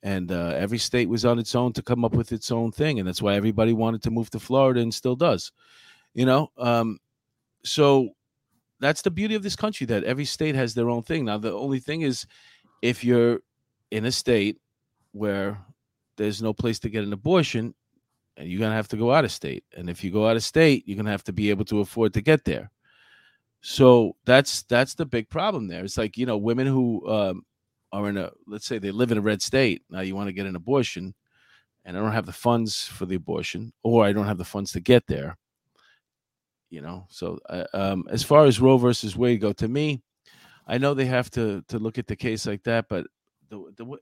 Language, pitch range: English, 105-125 Hz